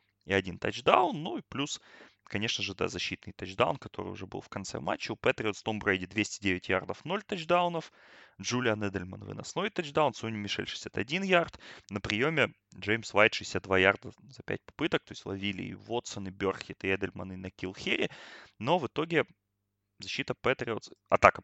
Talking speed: 170 wpm